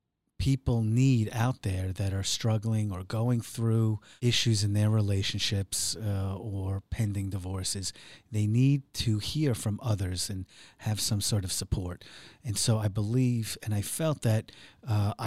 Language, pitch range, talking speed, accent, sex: English, 100-120 Hz, 155 wpm, American, male